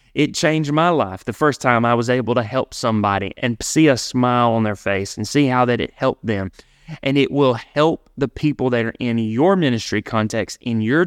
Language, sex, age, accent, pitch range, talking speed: English, male, 30-49, American, 120-150 Hz, 220 wpm